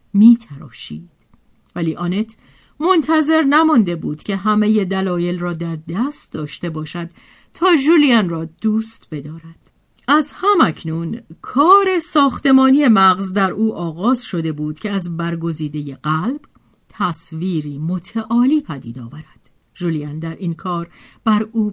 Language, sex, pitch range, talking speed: Persian, female, 170-240 Hz, 120 wpm